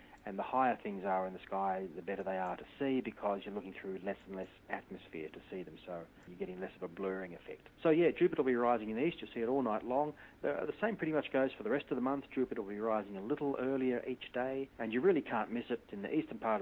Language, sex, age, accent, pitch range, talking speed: English, male, 40-59, Australian, 95-125 Hz, 280 wpm